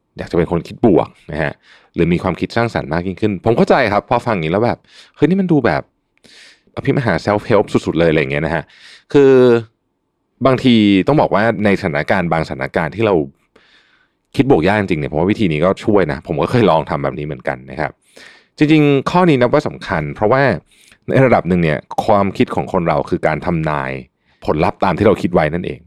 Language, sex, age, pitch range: Thai, male, 30-49, 80-115 Hz